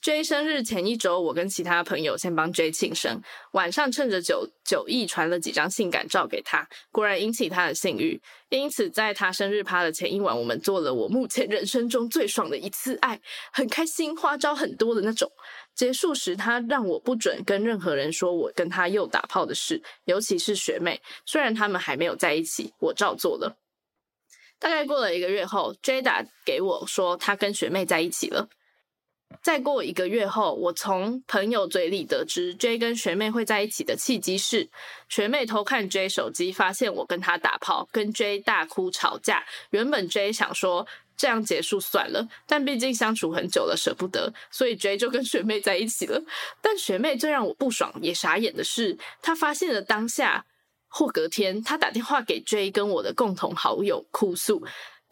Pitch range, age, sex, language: 195-295 Hz, 10-29, female, Chinese